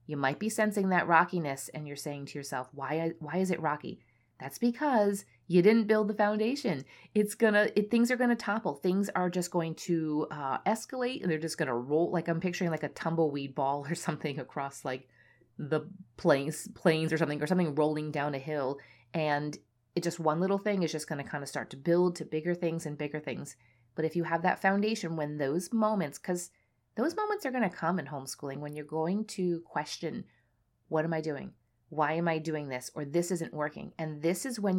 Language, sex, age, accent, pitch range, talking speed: English, female, 30-49, American, 145-185 Hz, 220 wpm